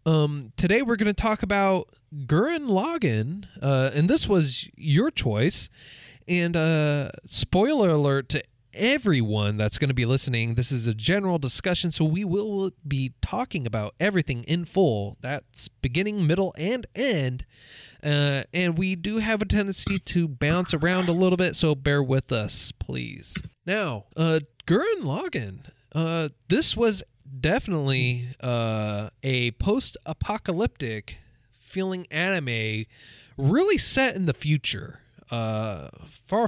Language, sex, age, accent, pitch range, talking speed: English, male, 20-39, American, 120-165 Hz, 135 wpm